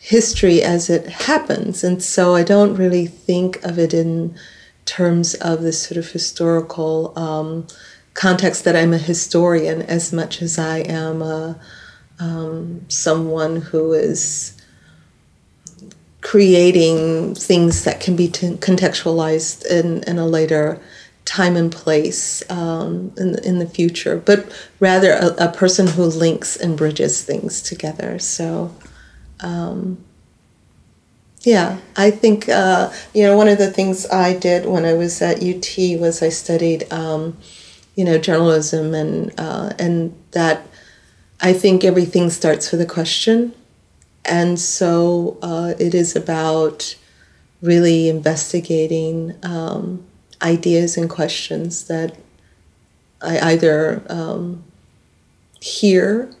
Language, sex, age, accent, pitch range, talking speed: English, female, 40-59, American, 160-185 Hz, 125 wpm